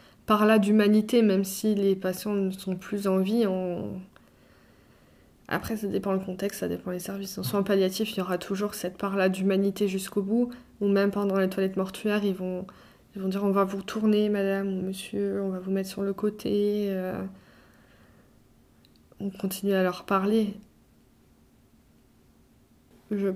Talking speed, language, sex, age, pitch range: 170 wpm, French, female, 20-39, 190-215 Hz